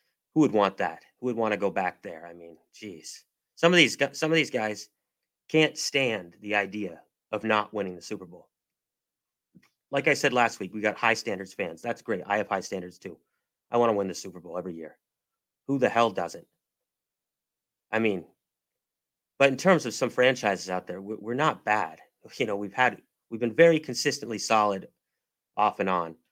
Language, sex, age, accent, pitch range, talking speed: English, male, 30-49, American, 105-140 Hz, 195 wpm